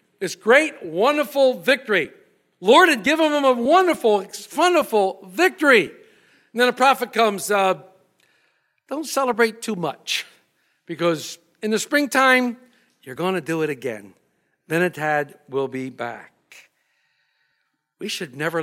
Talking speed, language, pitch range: 130 wpm, English, 165-275 Hz